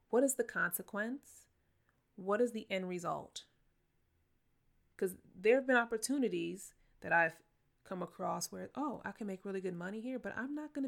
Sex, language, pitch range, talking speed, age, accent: female, English, 170-215 Hz, 170 wpm, 30-49, American